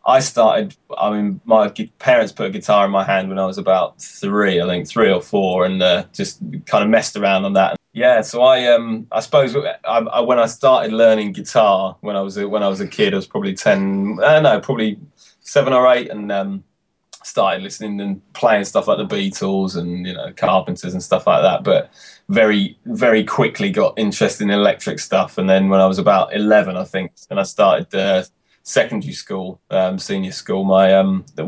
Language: English